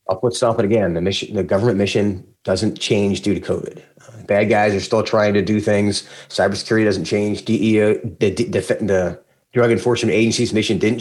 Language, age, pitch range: English, 30-49, 105-120 Hz